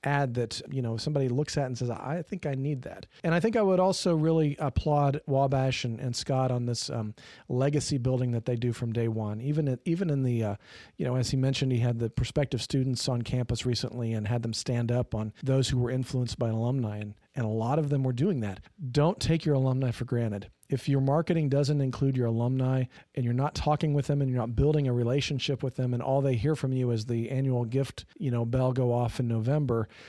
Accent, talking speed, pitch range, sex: American, 240 wpm, 120-145 Hz, male